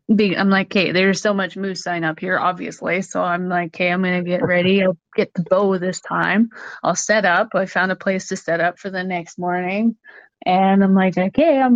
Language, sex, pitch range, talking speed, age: English, female, 180-220 Hz, 225 wpm, 20-39